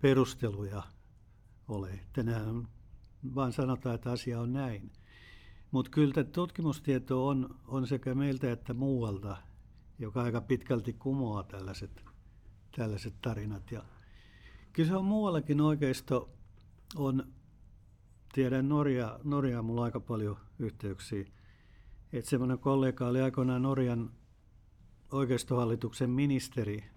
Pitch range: 105-130 Hz